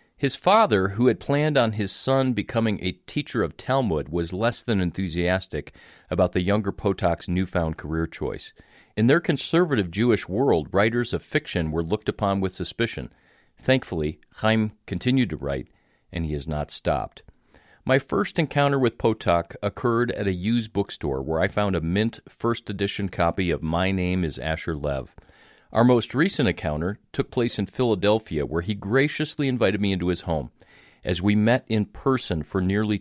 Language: English